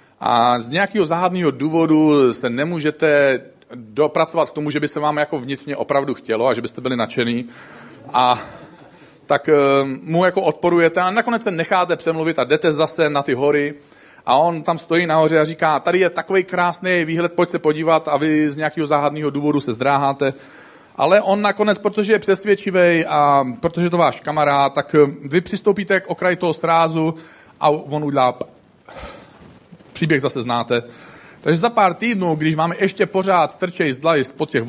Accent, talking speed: native, 170 wpm